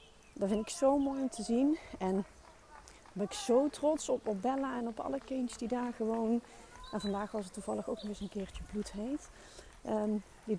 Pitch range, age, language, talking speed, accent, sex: 190-225 Hz, 40-59, Dutch, 205 wpm, Dutch, female